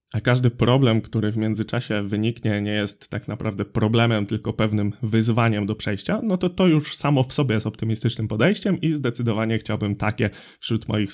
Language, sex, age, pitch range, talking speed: Polish, male, 20-39, 110-145 Hz, 180 wpm